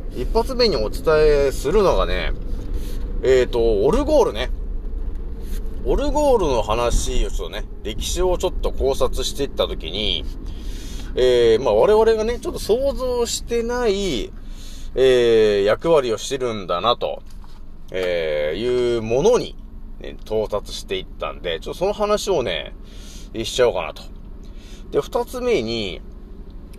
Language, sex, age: Japanese, male, 30-49